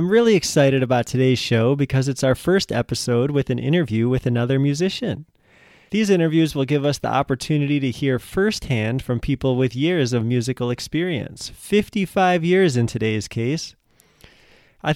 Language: English